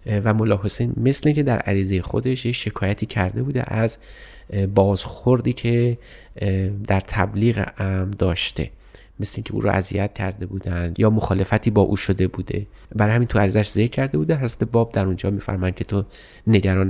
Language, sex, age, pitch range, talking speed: Persian, male, 30-49, 100-120 Hz, 165 wpm